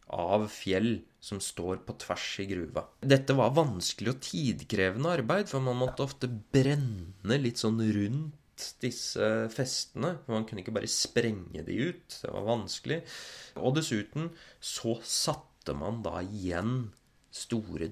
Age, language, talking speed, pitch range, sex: 30-49, English, 145 wpm, 90-135 Hz, male